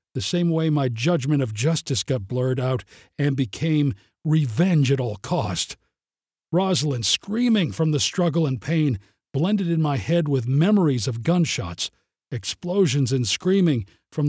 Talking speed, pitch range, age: 145 wpm, 120-160 Hz, 50-69